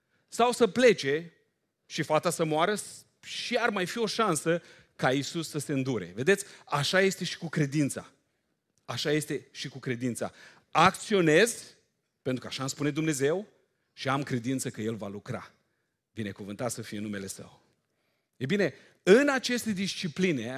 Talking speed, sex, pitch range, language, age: 160 wpm, male, 120-165 Hz, Romanian, 40-59